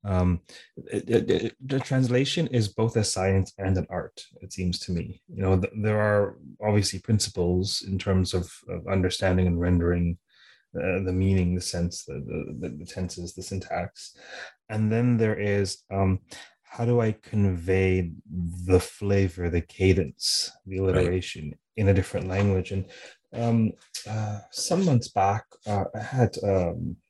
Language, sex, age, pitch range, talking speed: English, male, 30-49, 90-110 Hz, 160 wpm